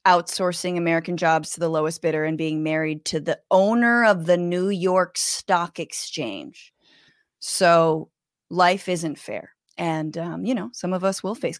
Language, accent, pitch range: English, American, 175-245 Hz